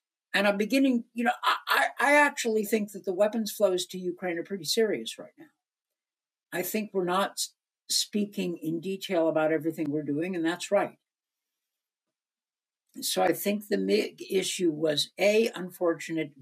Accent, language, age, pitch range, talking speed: American, English, 60-79, 160-210 Hz, 155 wpm